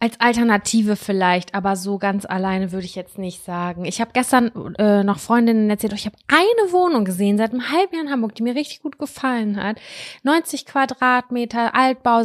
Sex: female